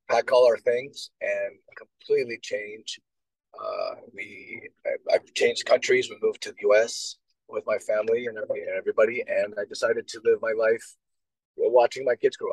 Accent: American